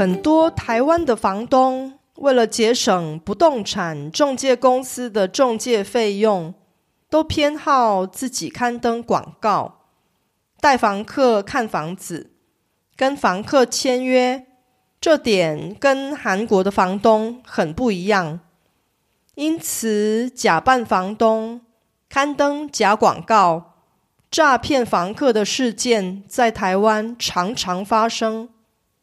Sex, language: female, Korean